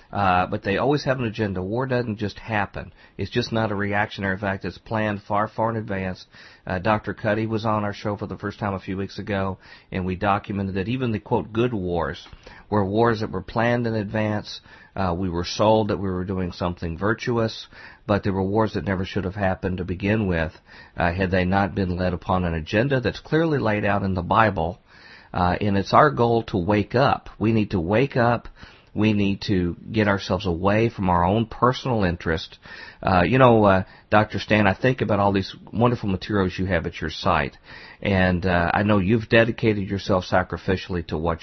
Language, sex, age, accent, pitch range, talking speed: English, male, 50-69, American, 95-110 Hz, 210 wpm